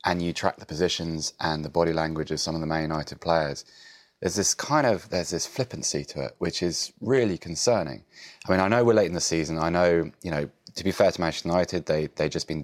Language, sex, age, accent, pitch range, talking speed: English, male, 20-39, British, 80-100 Hz, 240 wpm